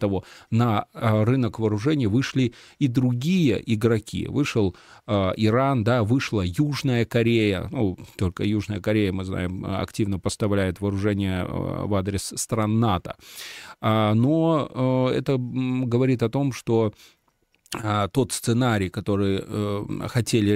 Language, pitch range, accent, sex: Russian, 100-120 Hz, native, male